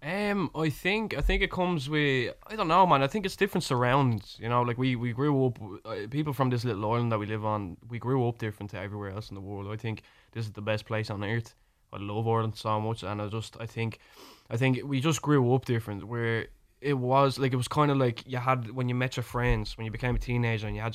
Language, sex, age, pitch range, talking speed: English, male, 10-29, 110-125 Hz, 270 wpm